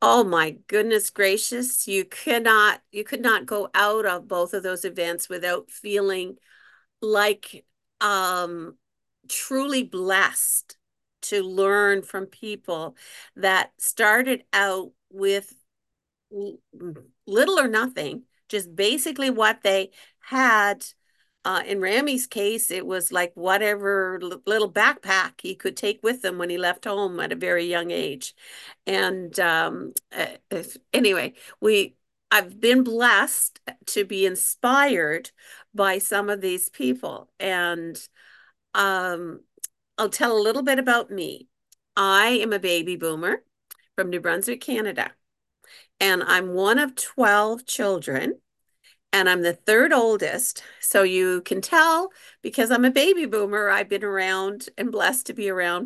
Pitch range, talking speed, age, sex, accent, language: 185-230 Hz, 130 wpm, 50-69, female, American, English